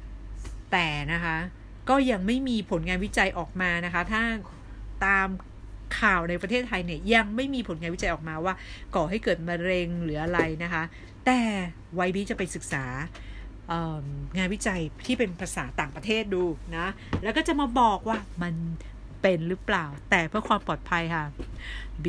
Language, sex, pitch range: Thai, female, 170-240 Hz